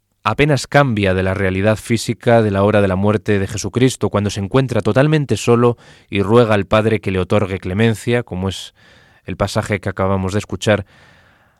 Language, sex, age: Spanish, male, 20-39